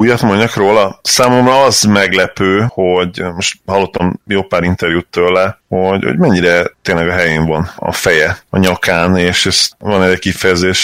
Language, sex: Hungarian, male